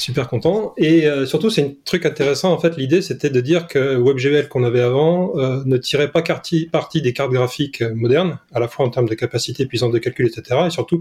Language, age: French, 30-49